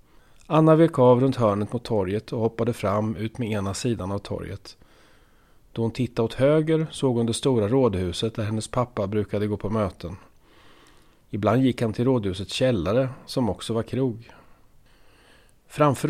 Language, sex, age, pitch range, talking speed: Swedish, male, 30-49, 105-125 Hz, 165 wpm